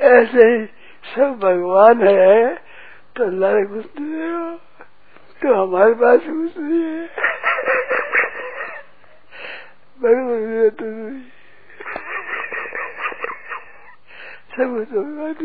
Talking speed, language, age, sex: 55 wpm, Hindi, 60-79, male